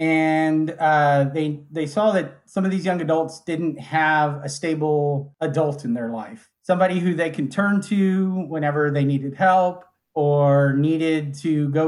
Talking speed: 165 wpm